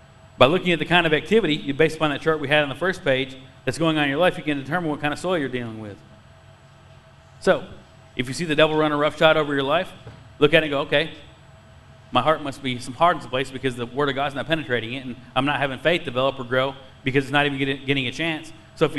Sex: male